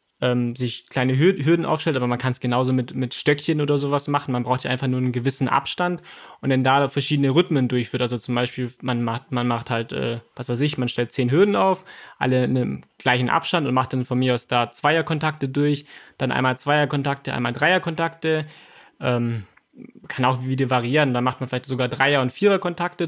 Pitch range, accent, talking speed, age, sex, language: 125-150 Hz, German, 205 wpm, 20-39, male, German